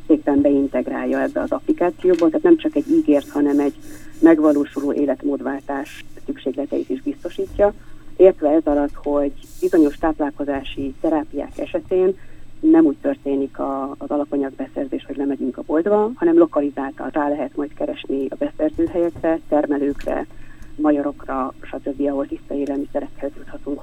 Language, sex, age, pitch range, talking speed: Hungarian, female, 30-49, 140-205 Hz, 125 wpm